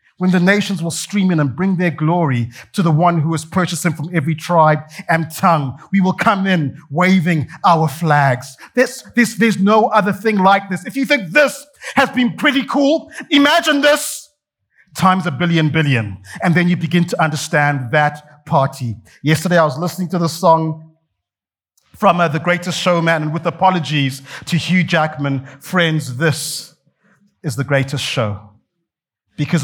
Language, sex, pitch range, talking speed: English, male, 145-180 Hz, 170 wpm